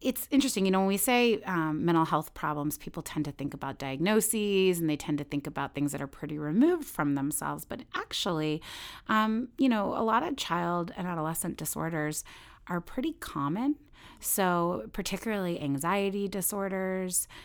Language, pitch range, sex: English, 145-200 Hz, female